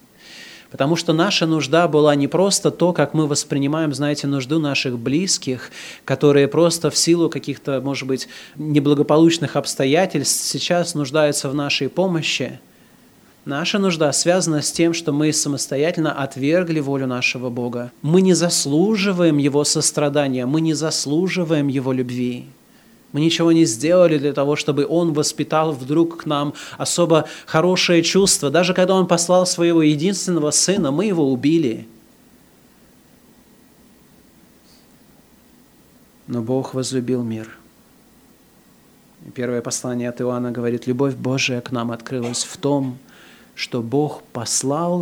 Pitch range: 130-165 Hz